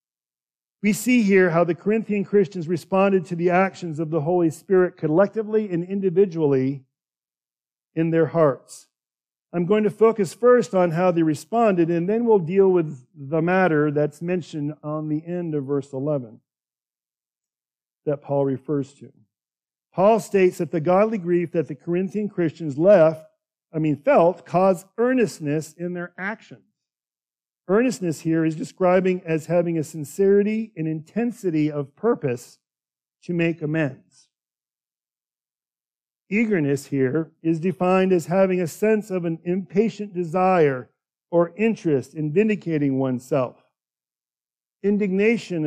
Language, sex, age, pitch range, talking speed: English, male, 50-69, 135-185 Hz, 135 wpm